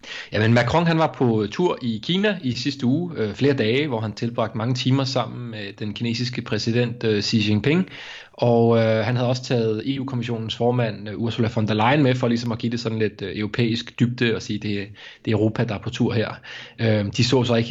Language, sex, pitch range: Danish, male, 110-125 Hz